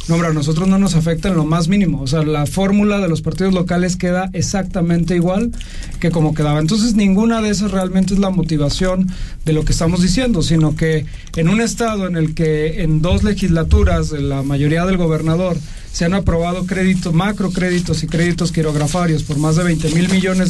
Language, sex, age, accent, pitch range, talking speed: Spanish, male, 40-59, Mexican, 160-185 Hz, 195 wpm